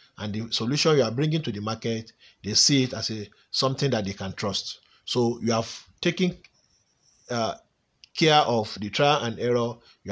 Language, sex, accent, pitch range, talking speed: English, male, Nigerian, 110-140 Hz, 185 wpm